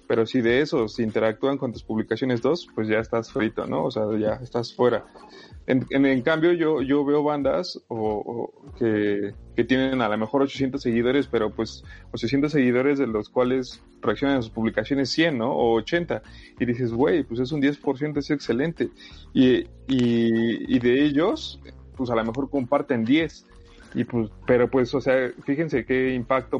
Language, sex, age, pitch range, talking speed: Spanish, male, 30-49, 110-135 Hz, 180 wpm